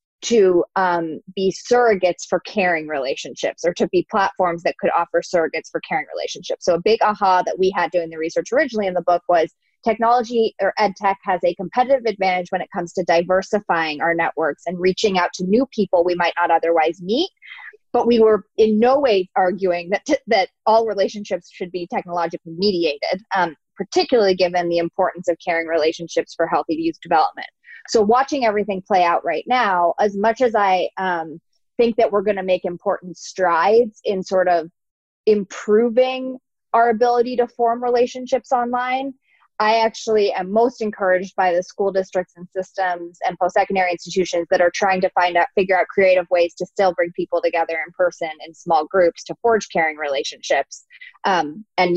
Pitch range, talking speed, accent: 175-225 Hz, 180 wpm, American